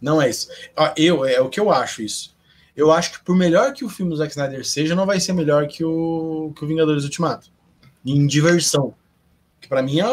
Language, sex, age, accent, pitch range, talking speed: Portuguese, male, 20-39, Brazilian, 155-220 Hz, 225 wpm